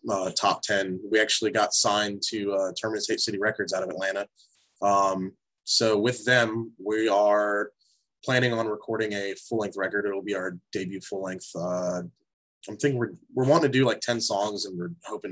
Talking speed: 180 wpm